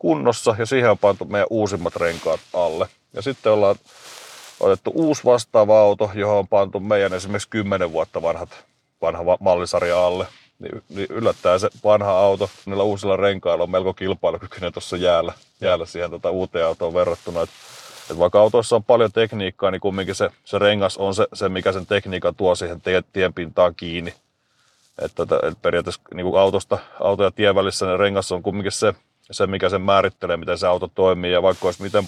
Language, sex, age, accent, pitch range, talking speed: Finnish, male, 30-49, native, 95-100 Hz, 180 wpm